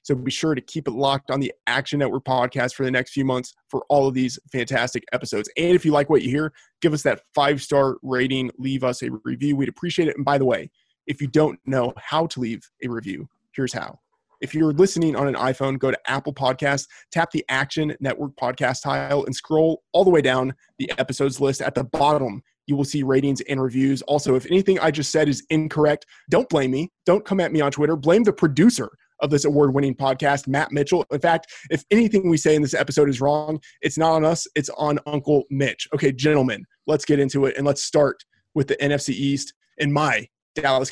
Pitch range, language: 130-155 Hz, English